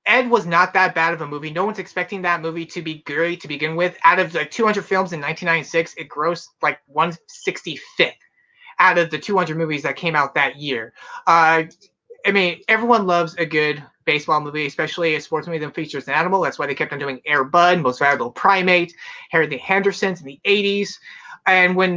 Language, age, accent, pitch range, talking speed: English, 30-49, American, 150-185 Hz, 210 wpm